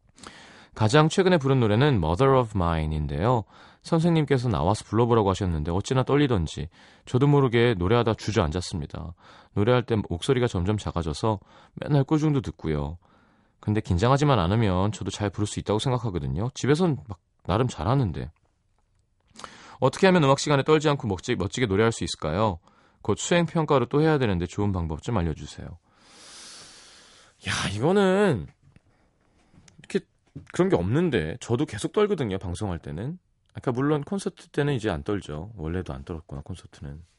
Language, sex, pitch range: Korean, male, 90-135 Hz